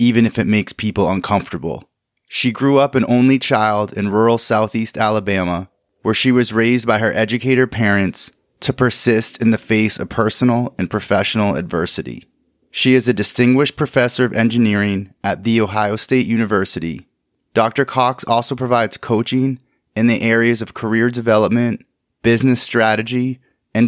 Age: 30-49